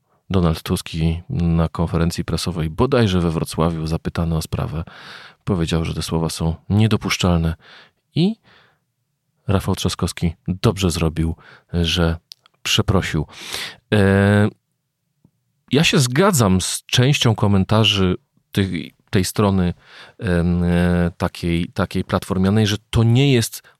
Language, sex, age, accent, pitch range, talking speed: Polish, male, 40-59, native, 85-110 Hz, 105 wpm